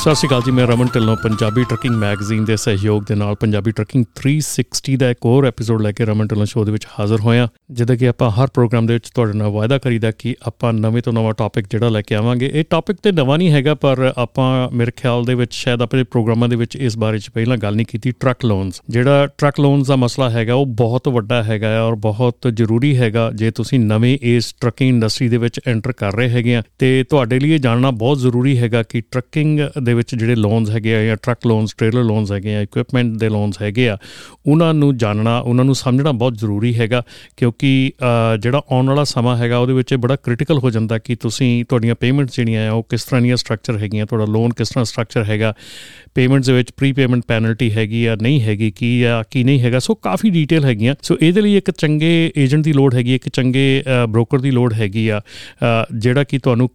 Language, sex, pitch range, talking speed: Punjabi, male, 115-130 Hz, 195 wpm